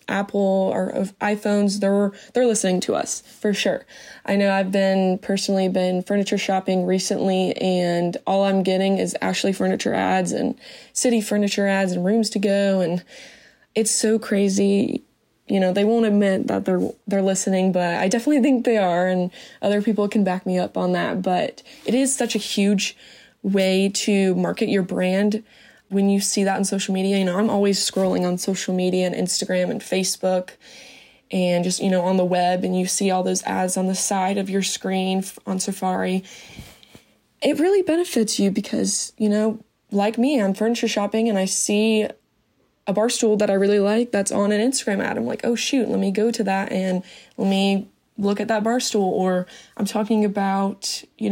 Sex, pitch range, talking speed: female, 190-220 Hz, 190 wpm